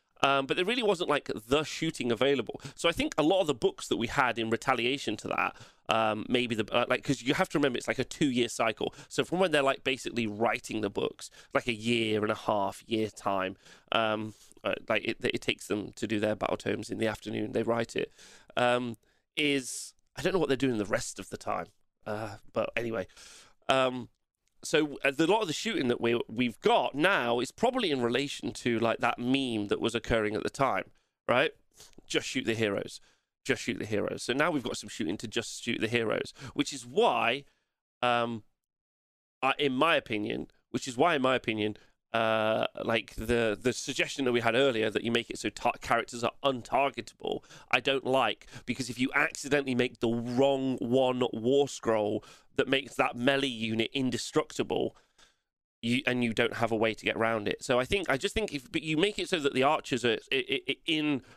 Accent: British